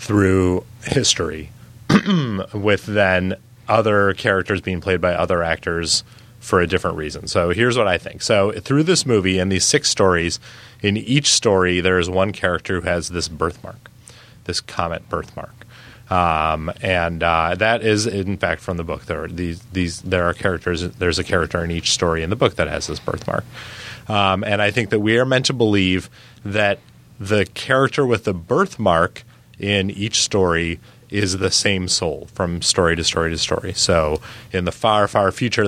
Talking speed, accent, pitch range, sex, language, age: 175 wpm, American, 90-115 Hz, male, English, 30-49